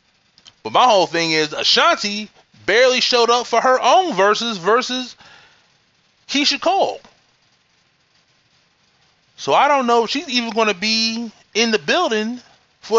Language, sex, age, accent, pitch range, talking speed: English, male, 30-49, American, 130-215 Hz, 140 wpm